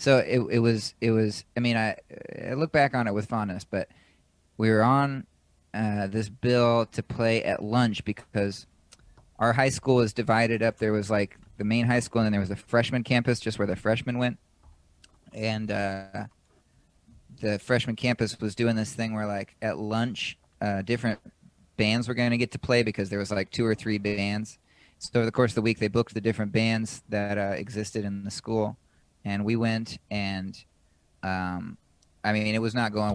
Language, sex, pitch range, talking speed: English, male, 100-120 Hz, 205 wpm